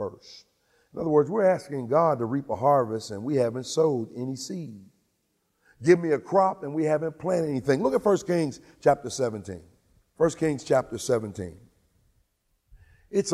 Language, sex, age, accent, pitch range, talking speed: English, male, 50-69, American, 135-190 Hz, 160 wpm